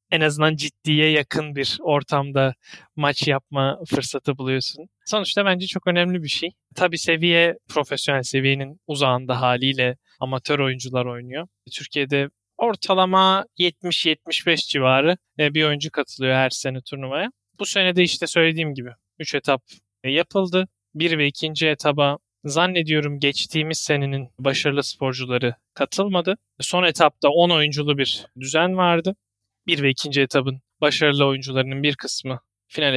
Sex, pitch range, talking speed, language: male, 135-165 Hz, 125 wpm, Turkish